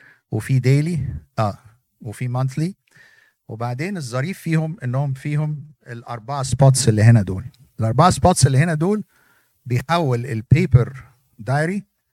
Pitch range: 120-140 Hz